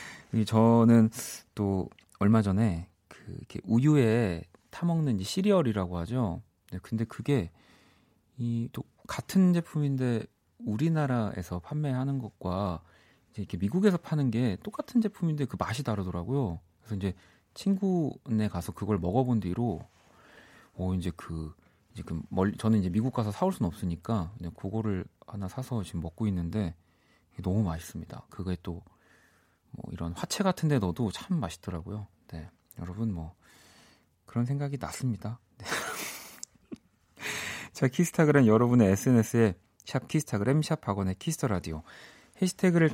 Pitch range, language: 90-130 Hz, Korean